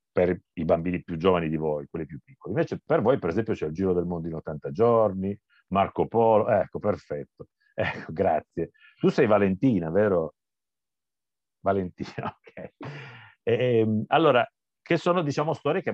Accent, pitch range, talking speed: native, 90-130 Hz, 160 wpm